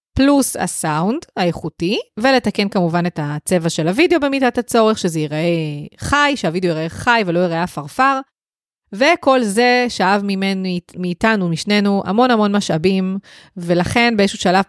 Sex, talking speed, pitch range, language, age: female, 130 wpm, 180-225 Hz, Hebrew, 30-49